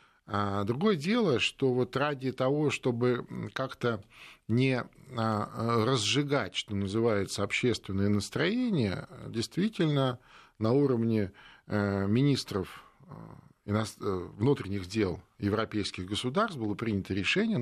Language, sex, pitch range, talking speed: Russian, male, 105-140 Hz, 80 wpm